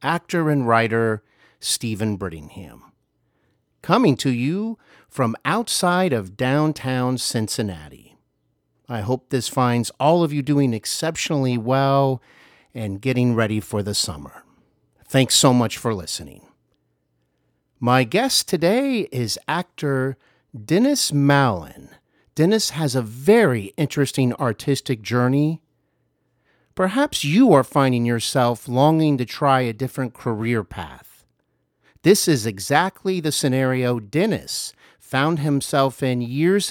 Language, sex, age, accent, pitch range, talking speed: English, male, 50-69, American, 110-145 Hz, 115 wpm